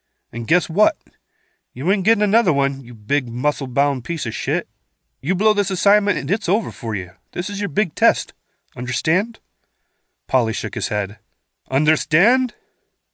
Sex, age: male, 30-49